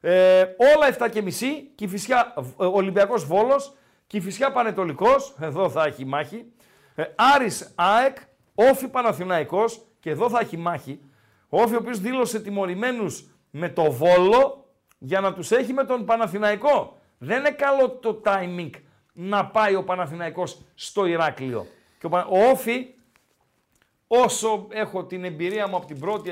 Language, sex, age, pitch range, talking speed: Greek, male, 50-69, 170-235 Hz, 140 wpm